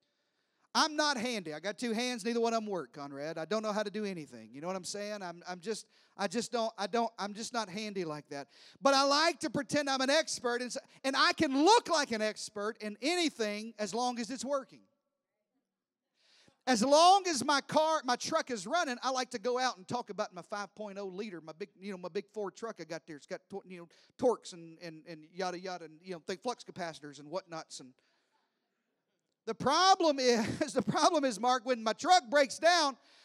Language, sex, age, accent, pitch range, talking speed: English, male, 40-59, American, 205-285 Hz, 225 wpm